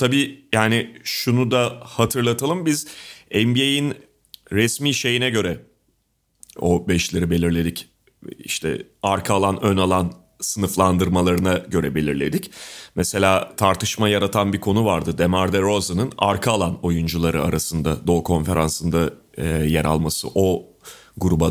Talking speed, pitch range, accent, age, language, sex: 110 wpm, 85-130 Hz, native, 30-49, Turkish, male